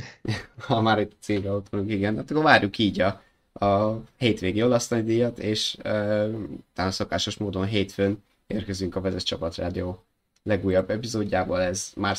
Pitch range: 90-105 Hz